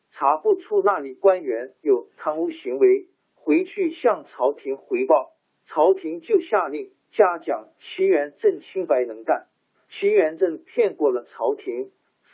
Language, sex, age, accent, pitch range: Chinese, male, 50-69, native, 310-405 Hz